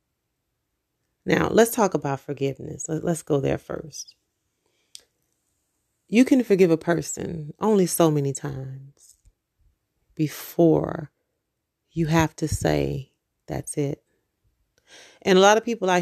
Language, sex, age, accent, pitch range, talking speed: English, female, 30-49, American, 145-185 Hz, 115 wpm